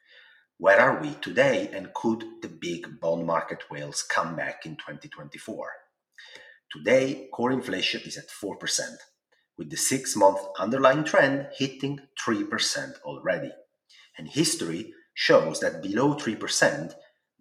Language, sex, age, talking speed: English, male, 30-49, 120 wpm